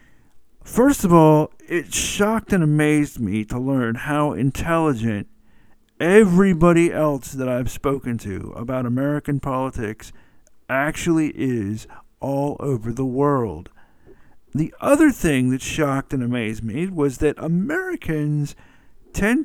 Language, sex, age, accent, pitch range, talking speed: English, male, 50-69, American, 120-160 Hz, 120 wpm